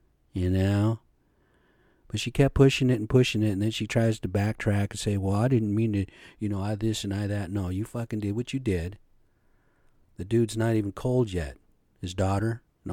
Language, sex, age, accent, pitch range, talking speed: English, male, 40-59, American, 95-115 Hz, 215 wpm